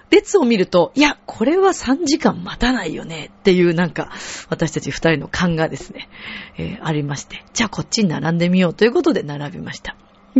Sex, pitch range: female, 165-250 Hz